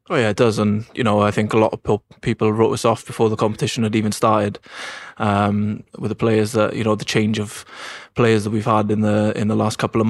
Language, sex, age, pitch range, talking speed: English, male, 20-39, 110-115 Hz, 255 wpm